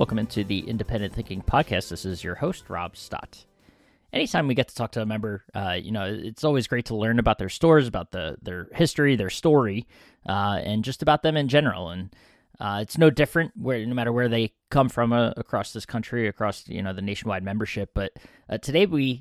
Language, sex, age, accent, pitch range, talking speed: English, male, 20-39, American, 105-135 Hz, 220 wpm